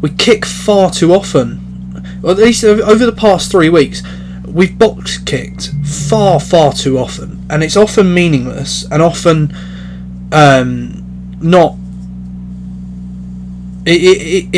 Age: 20-39